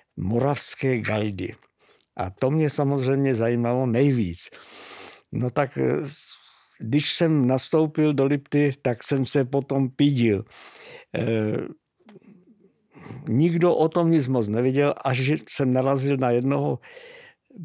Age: 60-79